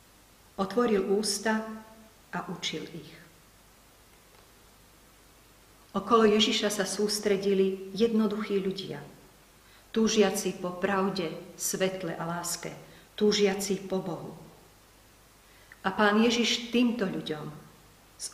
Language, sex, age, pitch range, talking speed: Slovak, female, 40-59, 165-205 Hz, 85 wpm